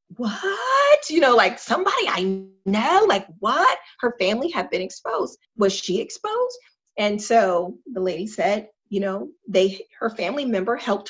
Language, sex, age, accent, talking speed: English, female, 30-49, American, 155 wpm